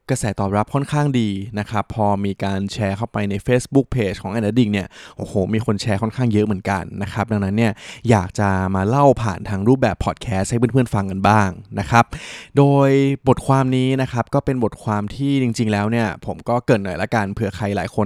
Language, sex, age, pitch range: Thai, male, 20-39, 105-125 Hz